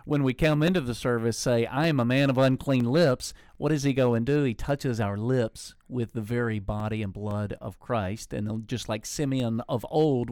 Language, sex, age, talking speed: English, male, 50-69, 220 wpm